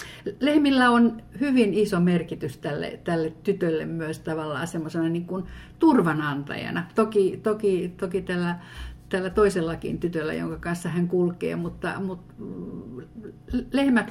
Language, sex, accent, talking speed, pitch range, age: Finnish, female, native, 120 wpm, 165-205 Hz, 50-69